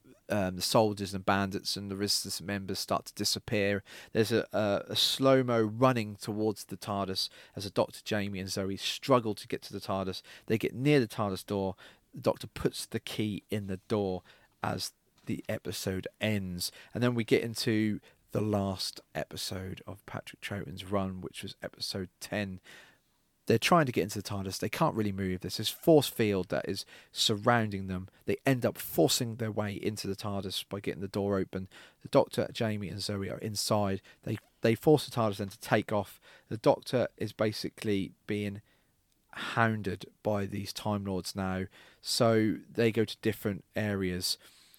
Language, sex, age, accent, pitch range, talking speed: English, male, 30-49, British, 95-110 Hz, 180 wpm